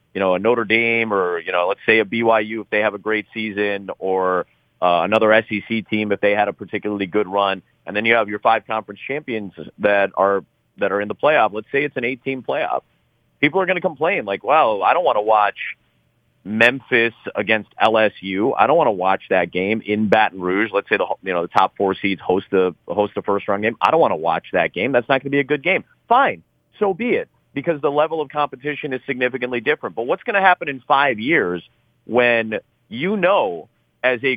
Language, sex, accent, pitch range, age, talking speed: English, male, American, 105-145 Hz, 30-49, 230 wpm